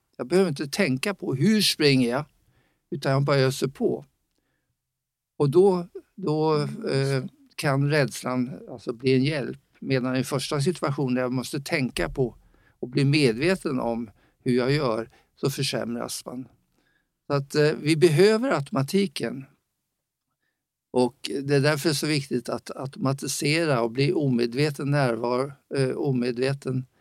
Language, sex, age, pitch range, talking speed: Swedish, male, 50-69, 125-150 Hz, 140 wpm